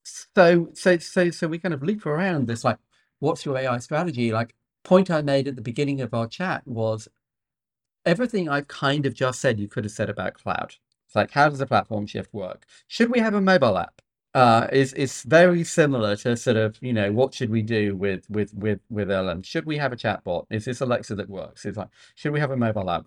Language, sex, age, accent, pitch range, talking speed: English, male, 50-69, British, 100-135 Hz, 230 wpm